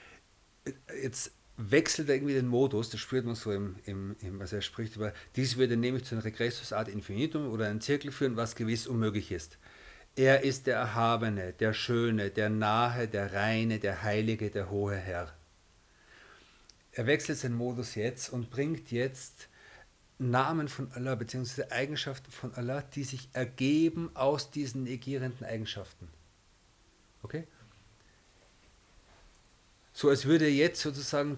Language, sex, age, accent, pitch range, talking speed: German, male, 50-69, German, 105-135 Hz, 145 wpm